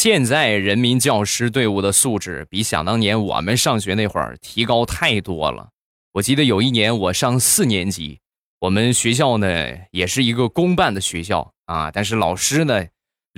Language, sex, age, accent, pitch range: Chinese, male, 20-39, native, 95-125 Hz